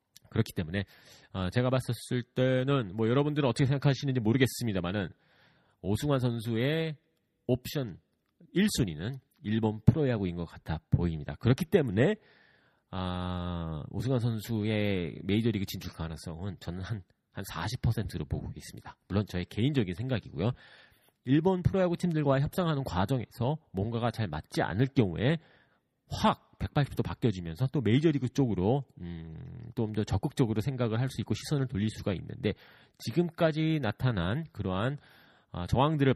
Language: Korean